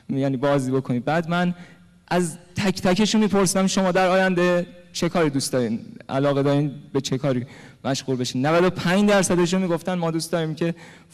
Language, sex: Persian, male